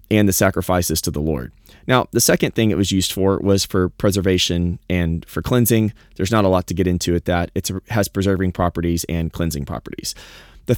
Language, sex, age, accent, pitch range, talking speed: English, male, 30-49, American, 90-110 Hz, 205 wpm